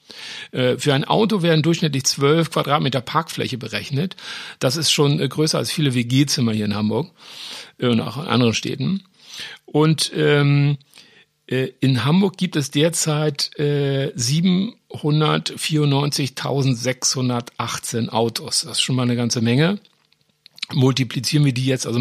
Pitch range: 125-150 Hz